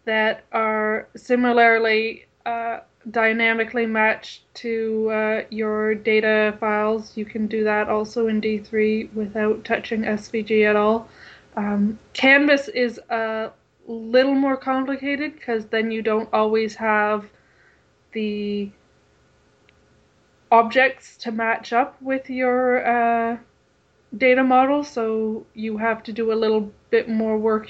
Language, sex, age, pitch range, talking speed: English, female, 20-39, 215-240 Hz, 120 wpm